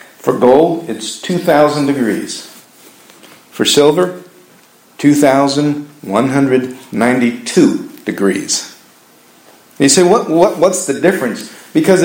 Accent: American